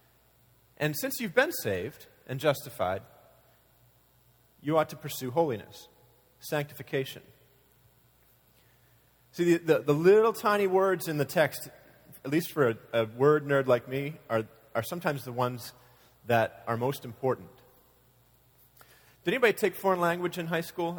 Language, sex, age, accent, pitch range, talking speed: English, male, 30-49, American, 125-165 Hz, 140 wpm